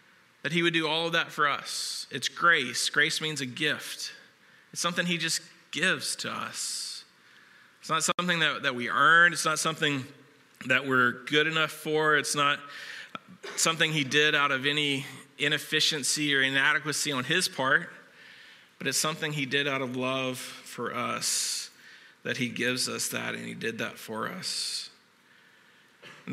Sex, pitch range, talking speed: male, 135-160 Hz, 165 wpm